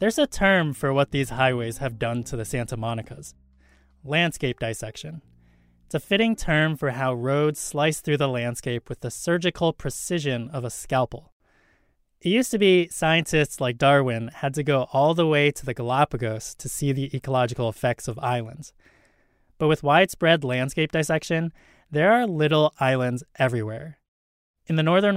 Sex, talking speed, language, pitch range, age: male, 165 wpm, English, 125-165 Hz, 20-39